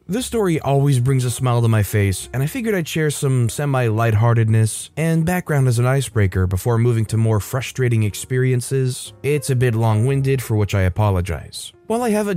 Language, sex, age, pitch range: English, male, 20-39, 110-140 Hz